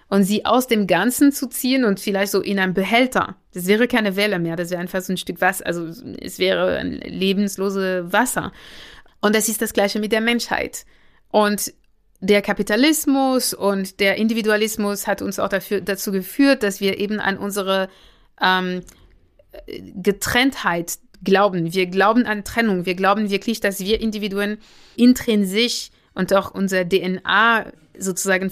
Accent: German